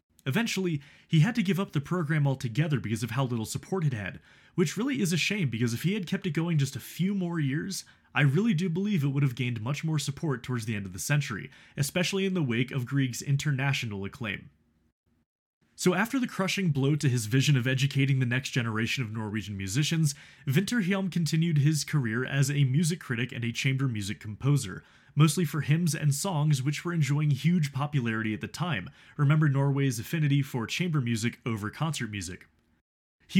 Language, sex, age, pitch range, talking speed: English, male, 20-39, 125-170 Hz, 200 wpm